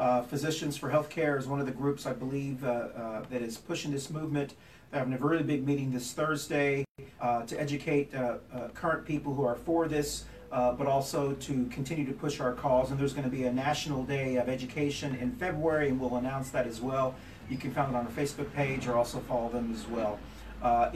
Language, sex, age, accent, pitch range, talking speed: English, male, 40-59, American, 125-155 Hz, 230 wpm